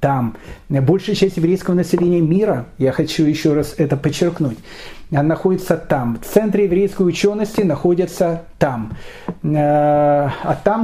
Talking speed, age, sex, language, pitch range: 120 wpm, 40-59, male, Russian, 150-190 Hz